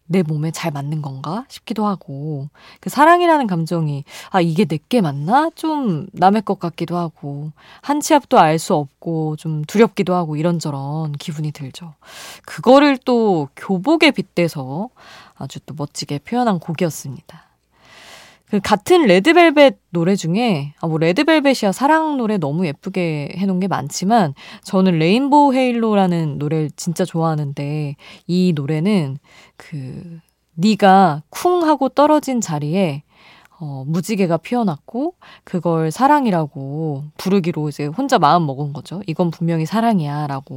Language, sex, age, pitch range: Korean, female, 20-39, 155-215 Hz